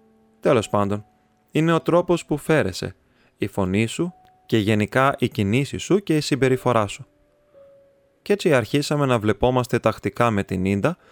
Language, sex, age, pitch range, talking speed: Greek, male, 20-39, 105-135 Hz, 150 wpm